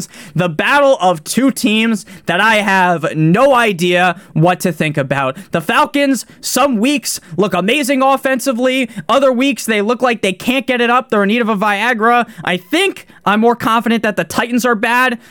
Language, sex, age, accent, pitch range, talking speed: English, male, 20-39, American, 190-250 Hz, 185 wpm